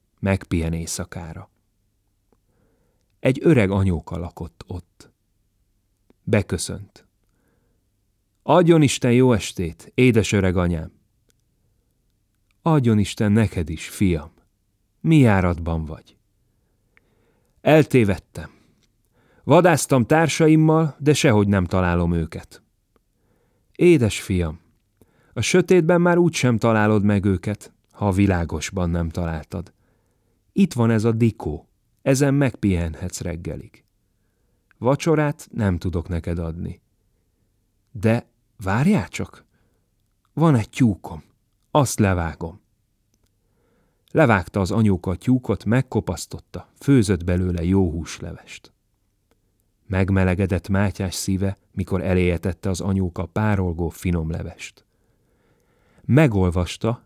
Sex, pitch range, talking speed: male, 90-115 Hz, 90 wpm